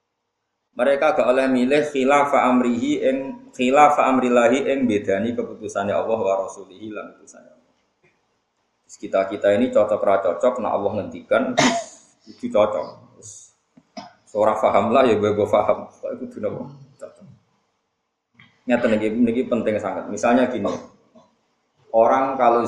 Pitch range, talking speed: 95-130 Hz, 120 wpm